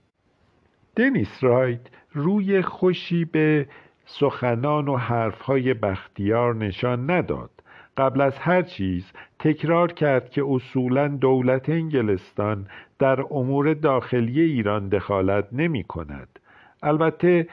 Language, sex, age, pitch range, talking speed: Persian, male, 50-69, 115-150 Hz, 100 wpm